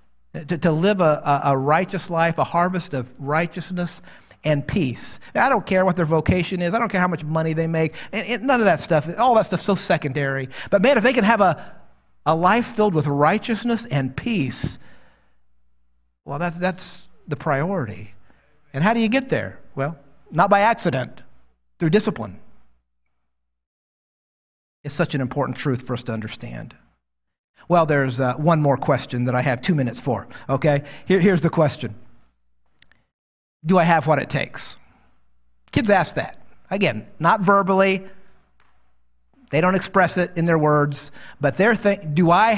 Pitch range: 125-180 Hz